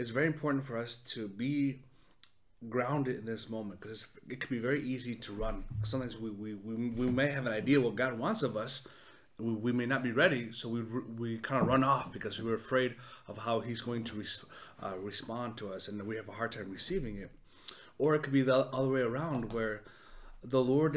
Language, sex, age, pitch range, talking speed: English, male, 30-49, 110-130 Hz, 225 wpm